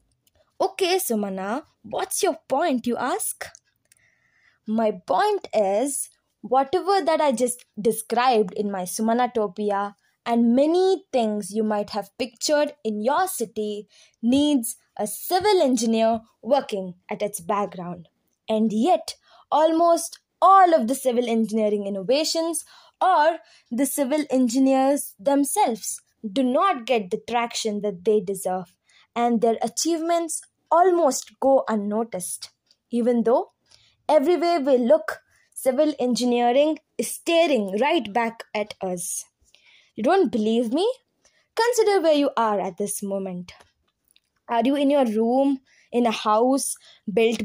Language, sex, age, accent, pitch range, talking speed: English, female, 20-39, Indian, 215-295 Hz, 125 wpm